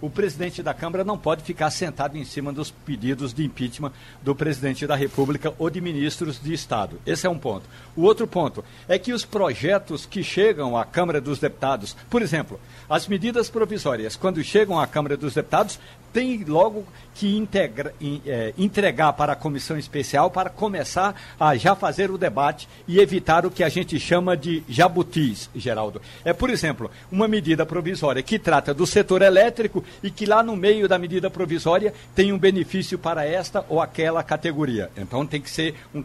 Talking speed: 180 wpm